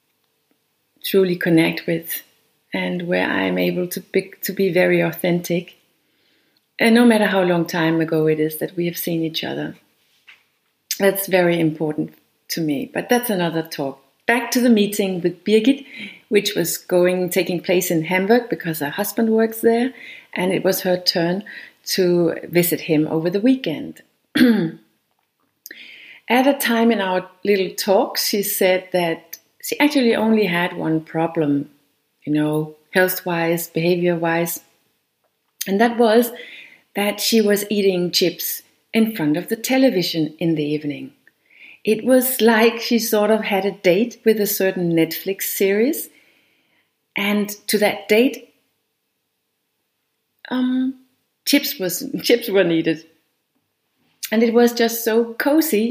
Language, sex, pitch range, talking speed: English, female, 170-230 Hz, 140 wpm